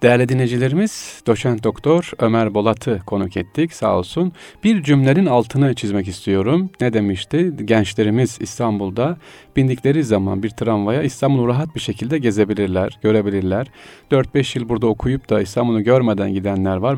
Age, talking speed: 40-59, 135 wpm